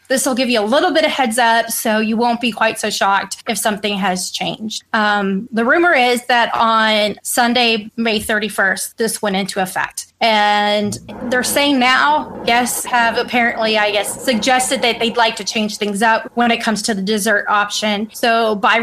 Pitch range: 210-255 Hz